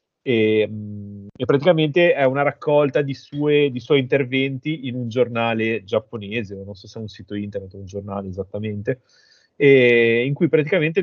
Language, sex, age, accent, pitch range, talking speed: Italian, male, 30-49, native, 105-130 Hz, 150 wpm